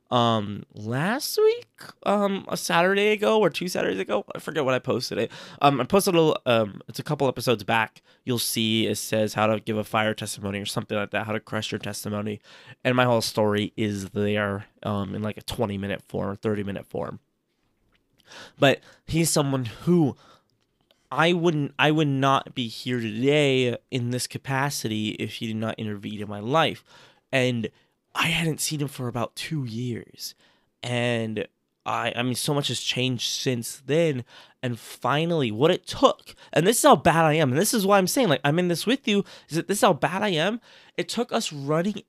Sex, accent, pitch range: male, American, 110-165 Hz